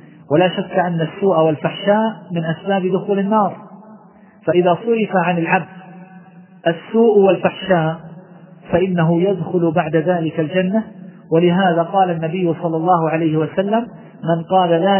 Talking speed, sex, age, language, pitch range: 120 wpm, male, 40-59, Arabic, 165-195 Hz